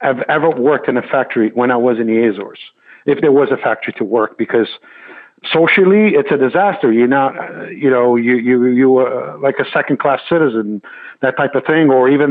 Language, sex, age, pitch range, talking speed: English, male, 50-69, 135-180 Hz, 210 wpm